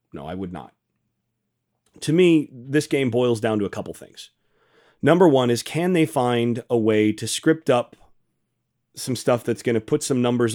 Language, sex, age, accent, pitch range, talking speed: English, male, 30-49, American, 110-130 Hz, 190 wpm